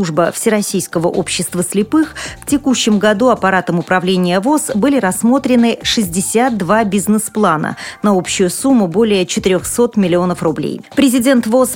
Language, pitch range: Russian, 185-230 Hz